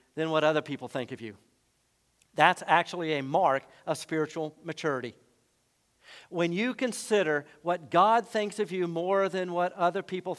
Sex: male